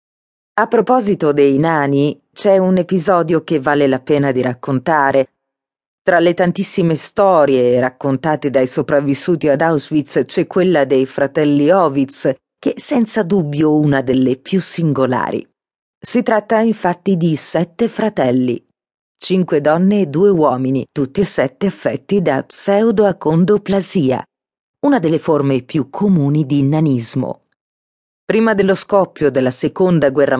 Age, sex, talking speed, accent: 40-59, female, 130 wpm, native